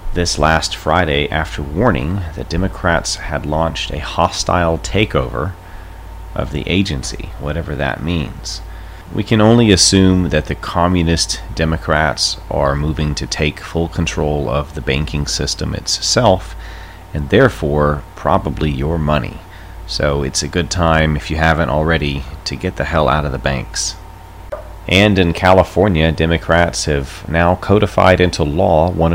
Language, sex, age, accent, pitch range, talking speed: English, male, 30-49, American, 75-90 Hz, 140 wpm